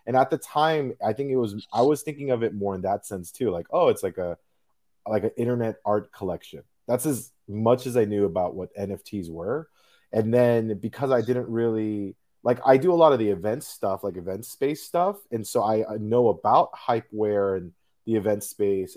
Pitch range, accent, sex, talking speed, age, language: 105-140 Hz, American, male, 215 wpm, 20-39, English